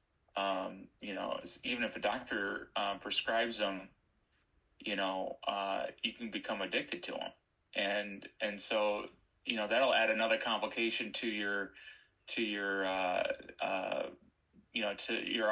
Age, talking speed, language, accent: 20-39, 150 wpm, English, American